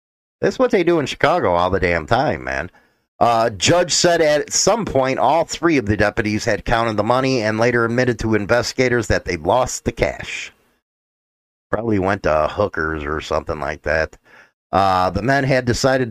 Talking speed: 185 wpm